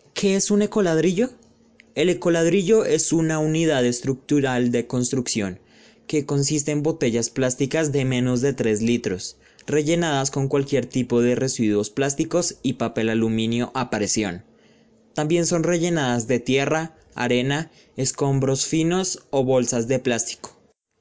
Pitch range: 125-165 Hz